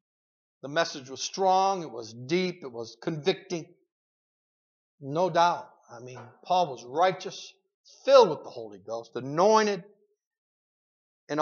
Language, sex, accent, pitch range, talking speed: English, male, American, 135-195 Hz, 125 wpm